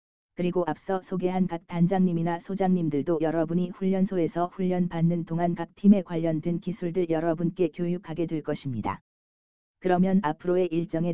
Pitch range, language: 155-180 Hz, Korean